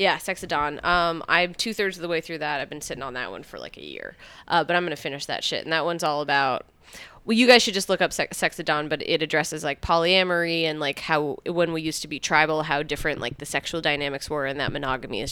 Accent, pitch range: American, 145-175 Hz